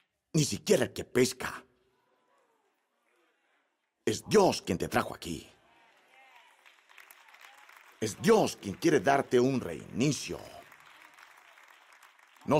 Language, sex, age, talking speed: Spanish, male, 50-69, 90 wpm